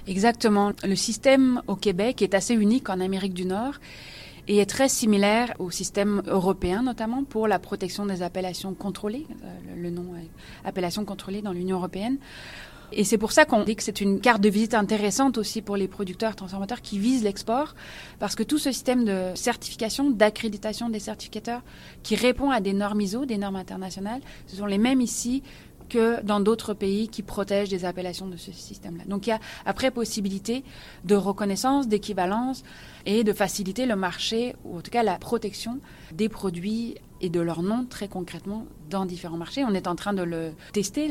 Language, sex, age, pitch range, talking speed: French, female, 30-49, 190-230 Hz, 190 wpm